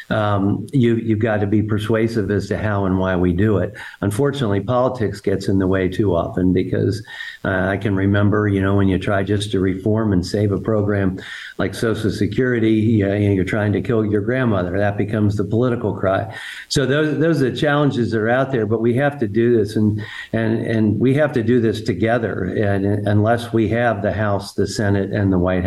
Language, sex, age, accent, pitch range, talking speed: English, male, 50-69, American, 100-120 Hz, 215 wpm